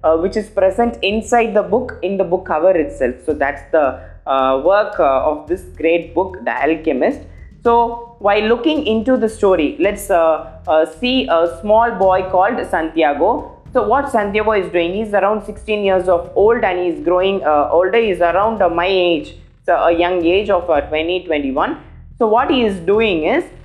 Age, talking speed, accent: 20-39, 190 wpm, native